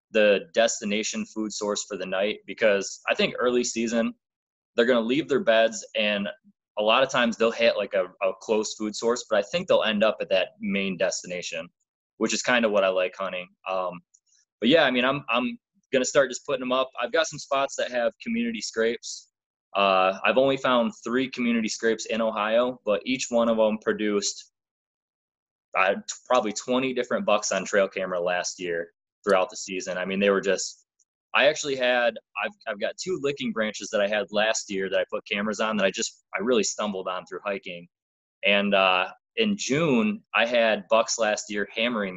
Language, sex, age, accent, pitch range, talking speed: English, male, 20-39, American, 100-125 Hz, 205 wpm